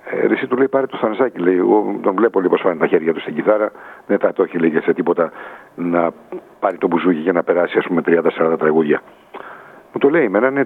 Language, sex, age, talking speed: Greek, male, 60-79, 235 wpm